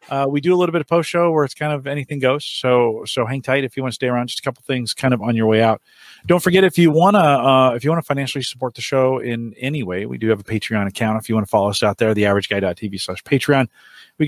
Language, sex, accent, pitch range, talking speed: English, male, American, 110-145 Hz, 280 wpm